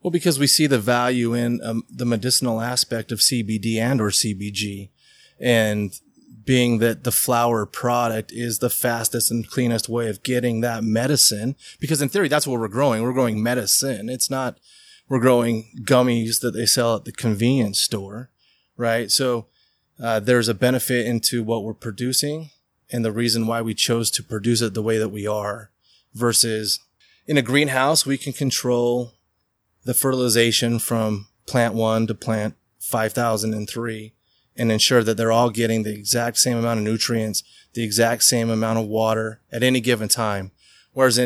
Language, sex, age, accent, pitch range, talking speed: English, male, 30-49, American, 110-125 Hz, 170 wpm